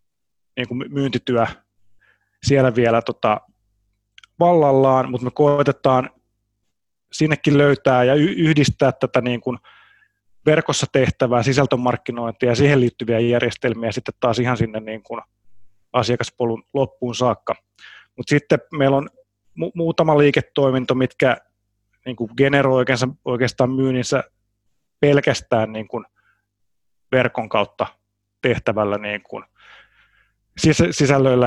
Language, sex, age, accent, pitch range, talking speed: Finnish, male, 30-49, native, 115-135 Hz, 110 wpm